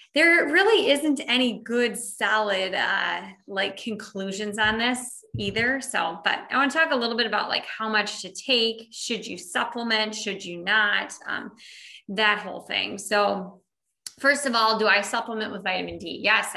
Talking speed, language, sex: 175 wpm, English, female